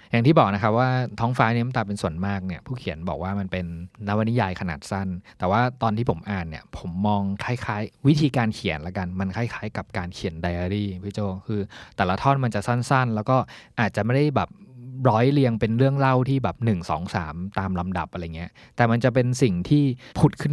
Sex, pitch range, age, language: male, 95-120 Hz, 20-39, Thai